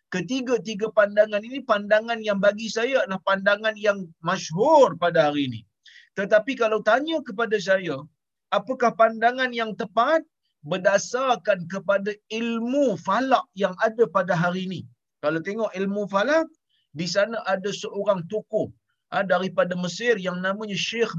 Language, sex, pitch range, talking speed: Malayalam, male, 180-235 Hz, 130 wpm